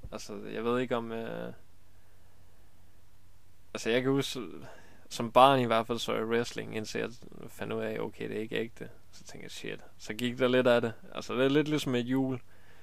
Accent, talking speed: native, 215 wpm